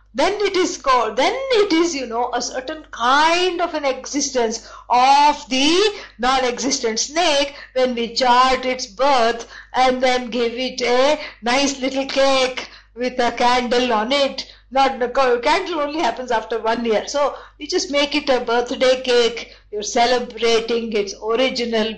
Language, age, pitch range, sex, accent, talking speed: English, 50-69, 245-315 Hz, female, Indian, 155 wpm